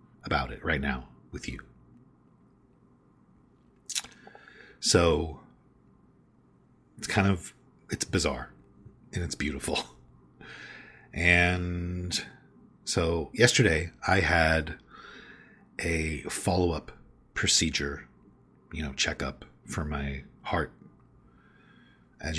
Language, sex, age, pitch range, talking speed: English, male, 40-59, 70-95 Hz, 80 wpm